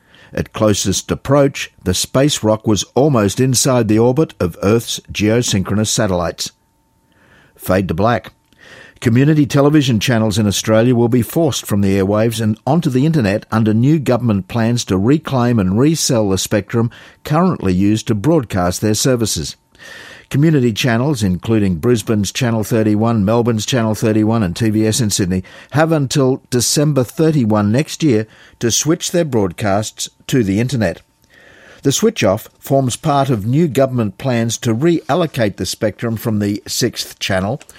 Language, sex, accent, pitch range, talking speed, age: English, male, Australian, 105-135 Hz, 145 wpm, 50-69